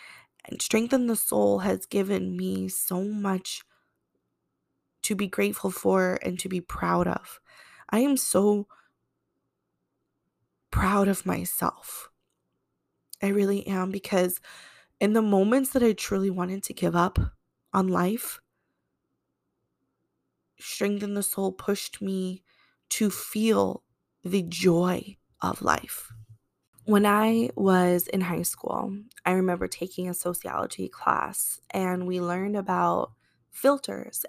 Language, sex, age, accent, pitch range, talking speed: English, female, 20-39, American, 175-200 Hz, 115 wpm